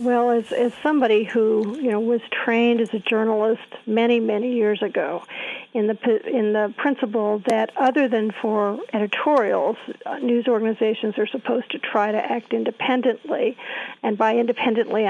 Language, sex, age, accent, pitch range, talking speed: English, female, 50-69, American, 220-255 Hz, 150 wpm